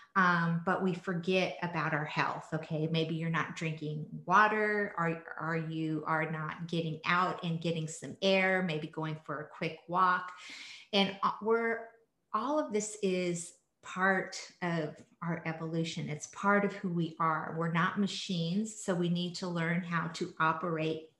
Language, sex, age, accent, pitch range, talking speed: English, female, 40-59, American, 165-195 Hz, 160 wpm